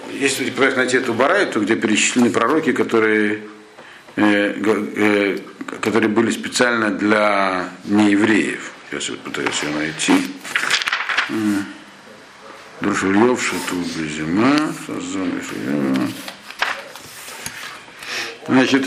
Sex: male